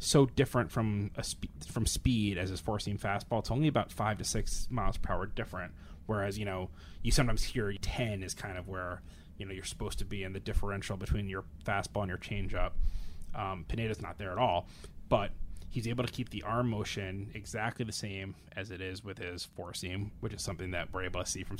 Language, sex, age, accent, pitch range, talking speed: English, male, 20-39, American, 90-110 Hz, 225 wpm